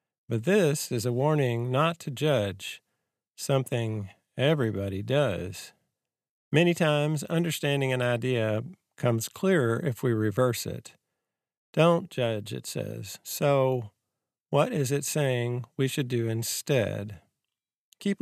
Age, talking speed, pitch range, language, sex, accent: 50-69, 120 wpm, 115-155 Hz, English, male, American